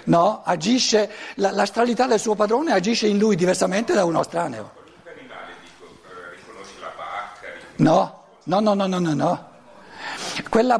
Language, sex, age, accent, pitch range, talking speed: Italian, male, 60-79, native, 185-240 Hz, 120 wpm